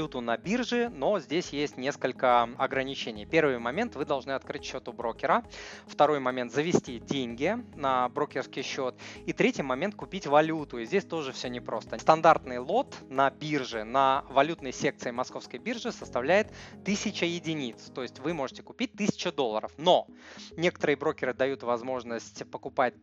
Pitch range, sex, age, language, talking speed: 125-170 Hz, male, 20-39, Russian, 150 wpm